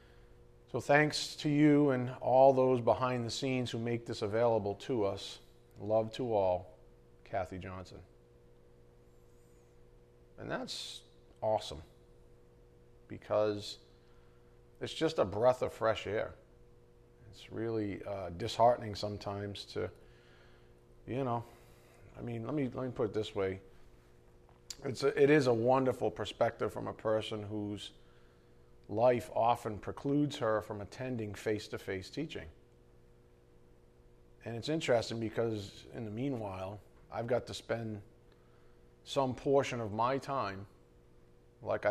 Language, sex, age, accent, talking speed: English, male, 40-59, American, 125 wpm